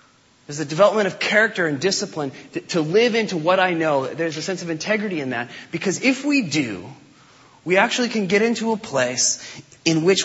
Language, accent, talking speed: English, American, 200 wpm